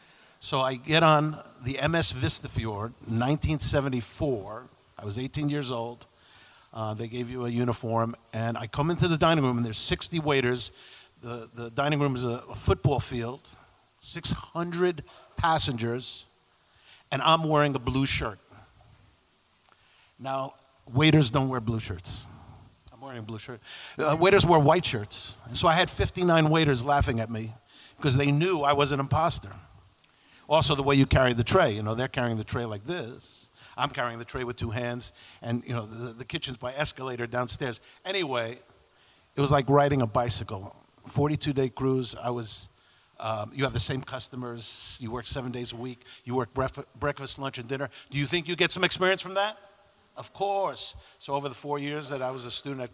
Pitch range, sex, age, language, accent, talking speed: 115-145 Hz, male, 50-69, English, American, 185 wpm